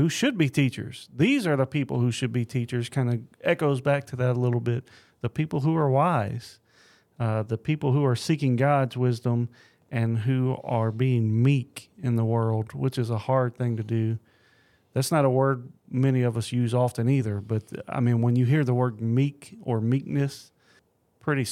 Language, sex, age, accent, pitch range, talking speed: English, male, 40-59, American, 115-140 Hz, 200 wpm